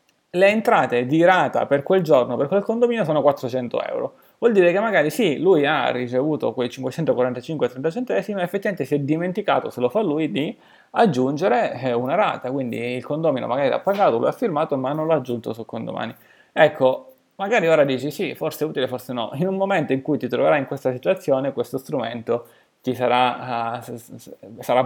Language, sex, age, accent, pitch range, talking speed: Italian, male, 20-39, native, 120-160 Hz, 185 wpm